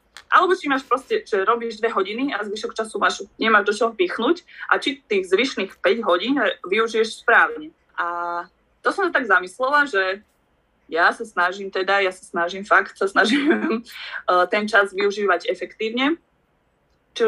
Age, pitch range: 20-39, 180-230 Hz